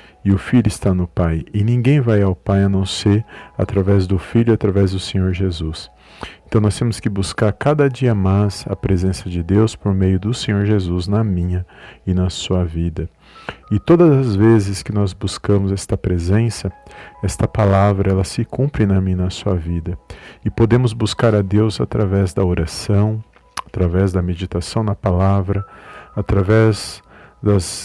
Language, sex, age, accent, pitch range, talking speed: Portuguese, male, 40-59, Brazilian, 95-110 Hz, 170 wpm